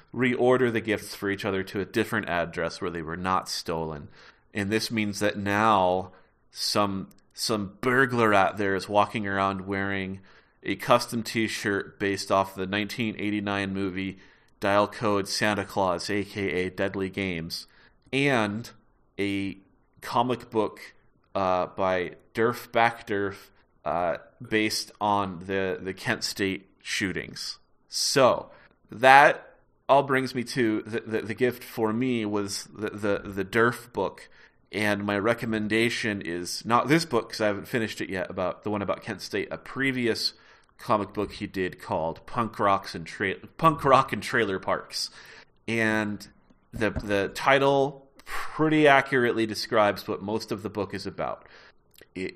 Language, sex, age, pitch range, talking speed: English, male, 30-49, 100-120 Hz, 145 wpm